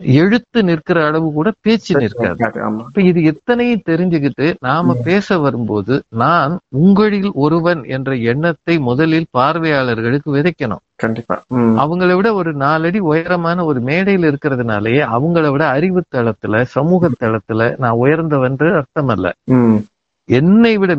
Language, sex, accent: Tamil, male, native